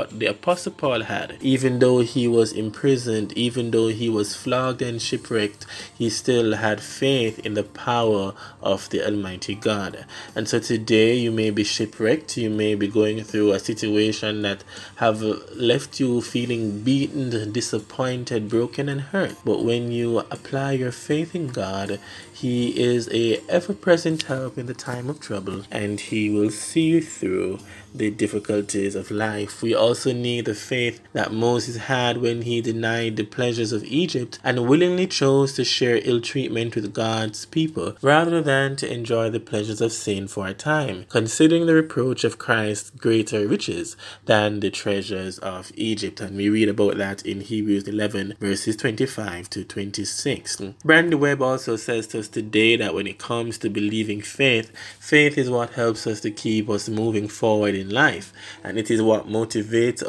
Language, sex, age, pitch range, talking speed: English, male, 20-39, 105-125 Hz, 170 wpm